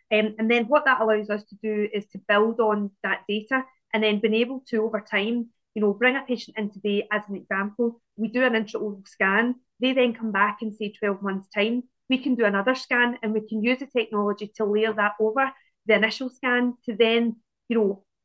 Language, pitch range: English, 205-235 Hz